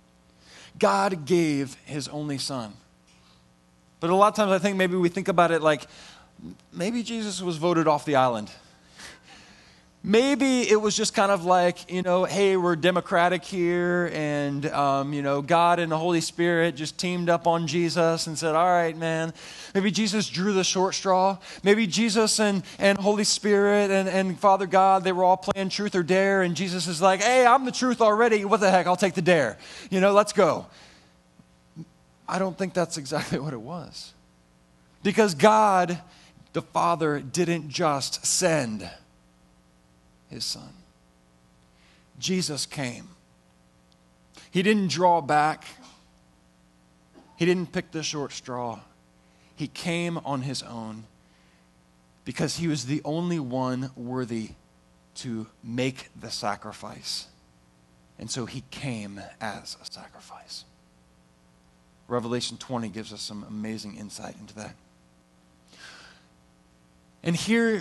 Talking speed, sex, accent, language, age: 145 wpm, male, American, English, 20-39